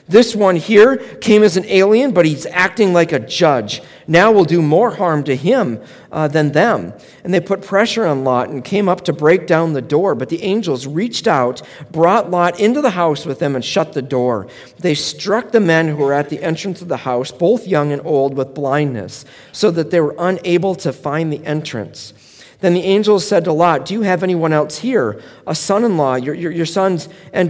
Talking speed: 215 wpm